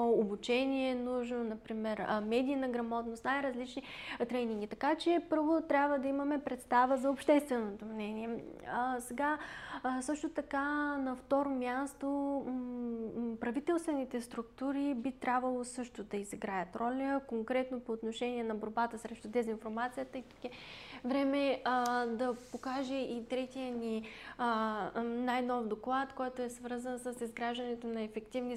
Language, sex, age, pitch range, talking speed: Bulgarian, female, 20-39, 230-270 Hz, 125 wpm